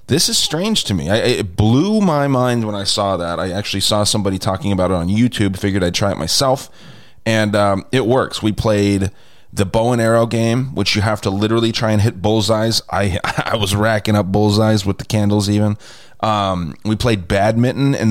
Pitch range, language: 100-125 Hz, English